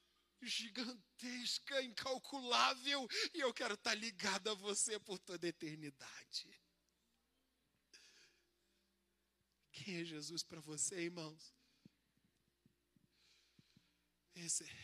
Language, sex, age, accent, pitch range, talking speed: Portuguese, male, 20-39, Brazilian, 140-195 Hz, 85 wpm